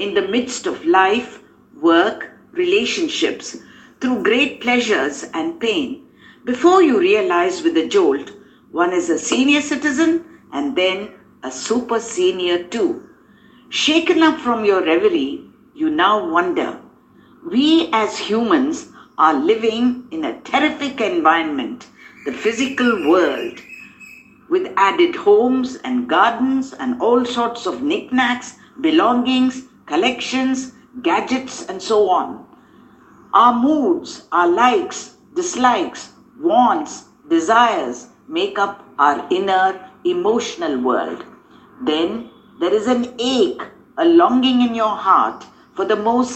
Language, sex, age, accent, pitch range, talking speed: English, female, 60-79, Indian, 225-335 Hz, 120 wpm